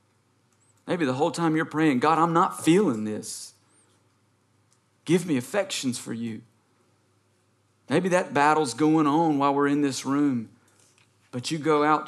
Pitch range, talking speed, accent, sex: 115-155 Hz, 150 wpm, American, male